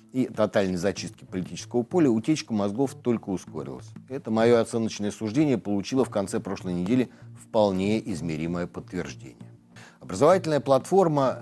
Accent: native